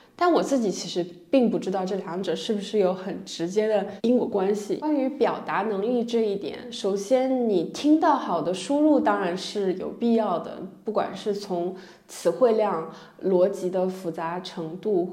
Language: Chinese